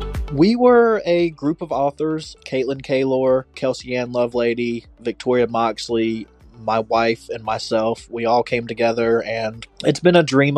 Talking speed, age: 150 wpm, 20-39